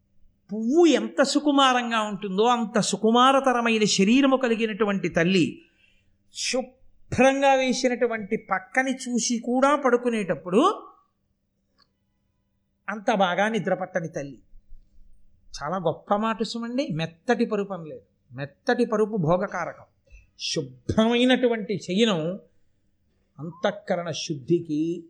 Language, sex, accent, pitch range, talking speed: Telugu, male, native, 150-235 Hz, 80 wpm